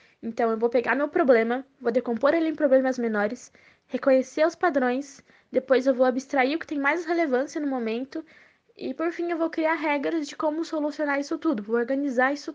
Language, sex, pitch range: Portuguese, female, 245-295 Hz